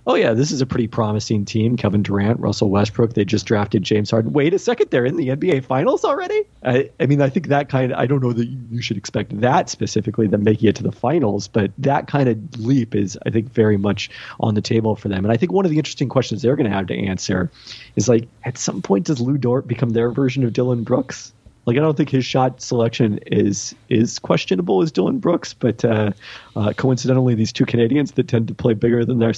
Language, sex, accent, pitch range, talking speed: English, male, American, 105-125 Hz, 245 wpm